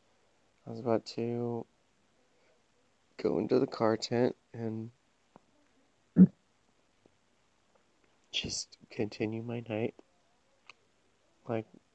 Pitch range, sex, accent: 110-135 Hz, male, American